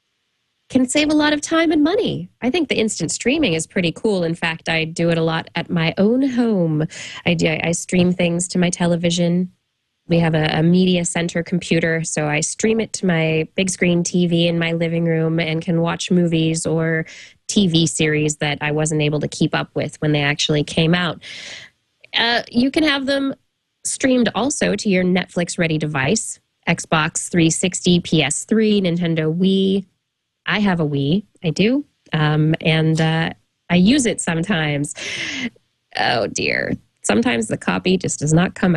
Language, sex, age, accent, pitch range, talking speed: English, female, 20-39, American, 160-205 Hz, 175 wpm